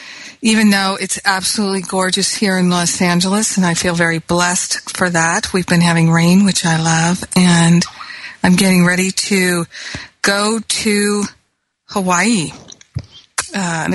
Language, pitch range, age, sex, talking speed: English, 180-210 Hz, 50-69, female, 140 wpm